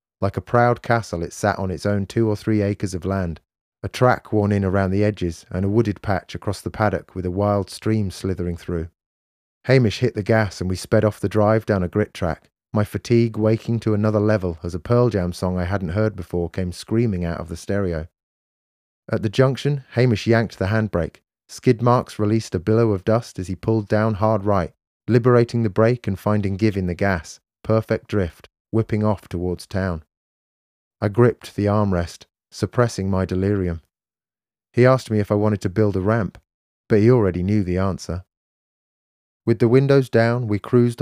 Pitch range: 95-115 Hz